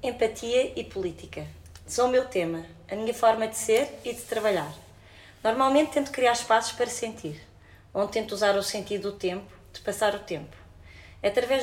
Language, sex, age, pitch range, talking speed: Portuguese, female, 20-39, 180-220 Hz, 175 wpm